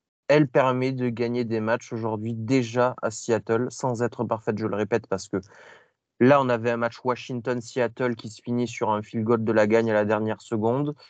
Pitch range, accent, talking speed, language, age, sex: 115-130 Hz, French, 205 wpm, French, 20-39, male